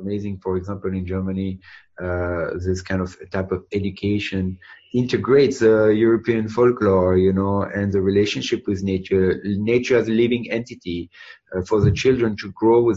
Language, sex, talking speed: English, male, 160 wpm